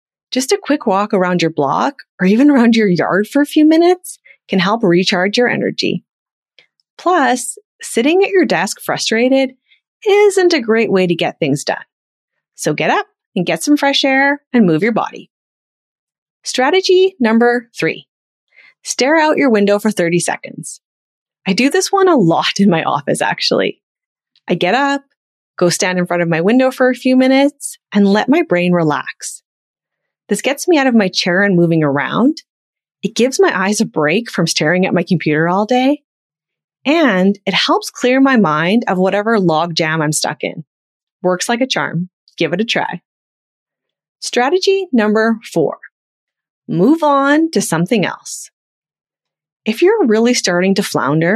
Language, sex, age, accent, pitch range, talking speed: English, female, 30-49, American, 180-285 Hz, 170 wpm